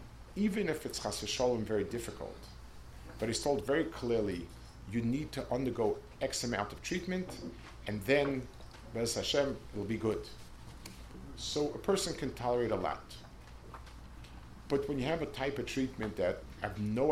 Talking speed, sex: 150 wpm, male